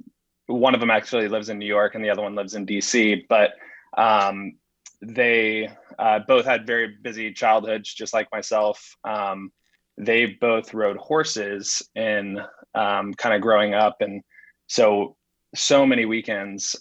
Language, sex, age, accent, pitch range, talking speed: English, male, 20-39, American, 100-110 Hz, 155 wpm